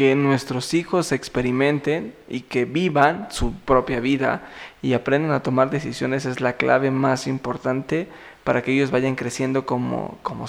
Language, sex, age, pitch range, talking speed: Spanish, male, 20-39, 135-155 Hz, 155 wpm